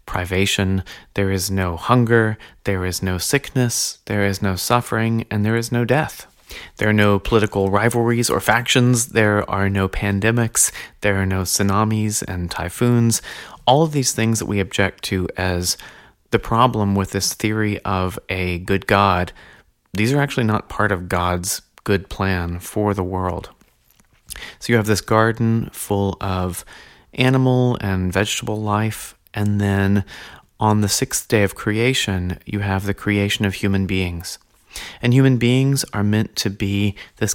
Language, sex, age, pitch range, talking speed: English, male, 30-49, 95-115 Hz, 160 wpm